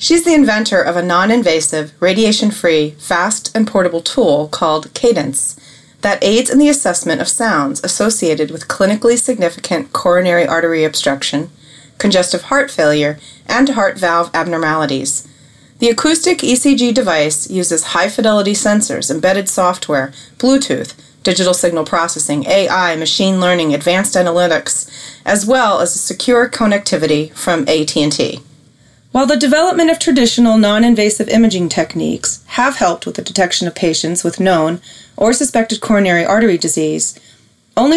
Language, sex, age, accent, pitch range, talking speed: English, female, 30-49, American, 165-230 Hz, 130 wpm